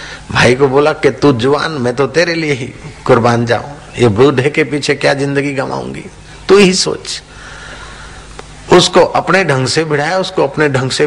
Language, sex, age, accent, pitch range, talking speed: Hindi, male, 50-69, native, 115-150 Hz, 170 wpm